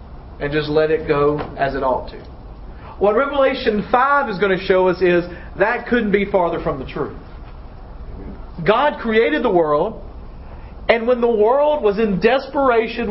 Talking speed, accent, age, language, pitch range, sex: 165 wpm, American, 40-59, English, 170-250 Hz, male